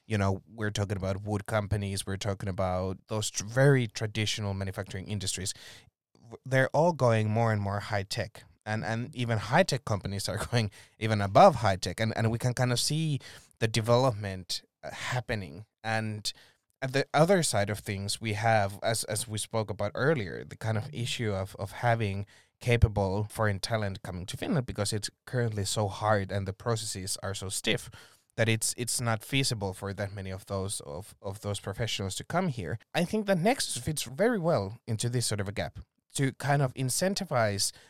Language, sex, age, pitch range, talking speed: English, male, 20-39, 100-120 Hz, 190 wpm